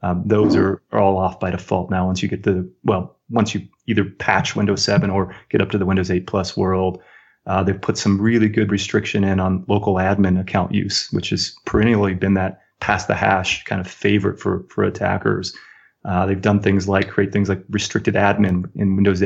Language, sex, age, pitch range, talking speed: English, male, 30-49, 95-105 Hz, 210 wpm